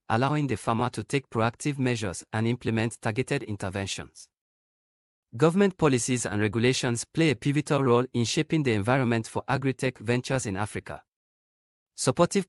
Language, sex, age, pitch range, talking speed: English, male, 40-59, 105-140 Hz, 140 wpm